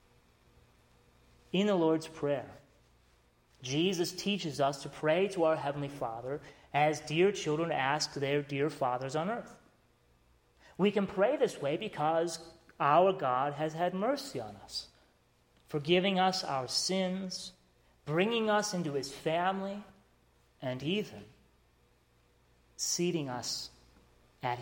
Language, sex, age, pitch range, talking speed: English, male, 30-49, 110-170 Hz, 120 wpm